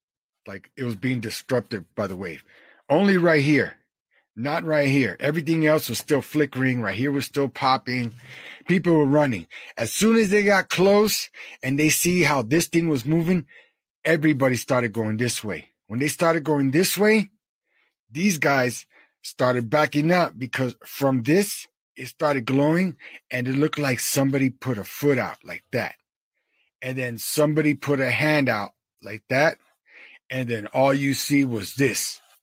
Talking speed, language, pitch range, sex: 165 wpm, English, 125-155 Hz, male